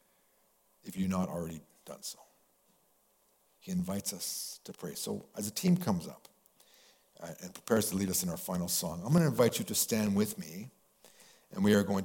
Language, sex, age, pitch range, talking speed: English, male, 50-69, 95-145 Hz, 190 wpm